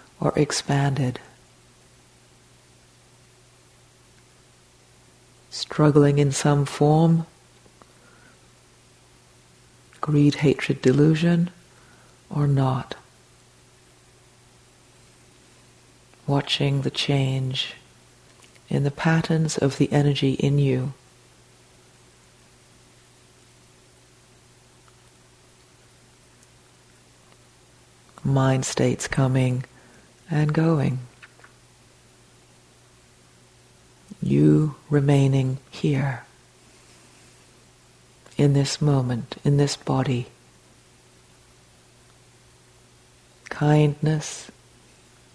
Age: 40-59